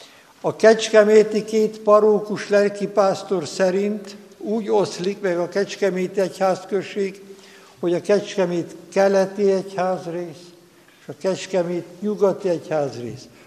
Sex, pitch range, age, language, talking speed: male, 170-210 Hz, 60-79, Hungarian, 100 wpm